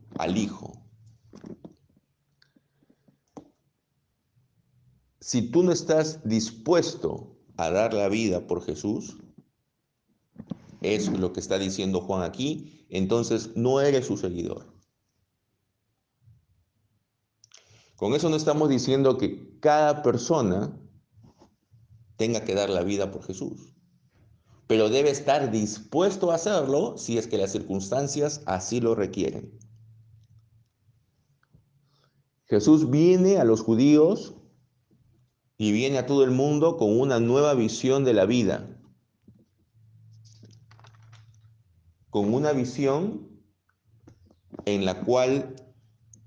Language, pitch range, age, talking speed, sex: Spanish, 110-135 Hz, 50-69, 100 wpm, male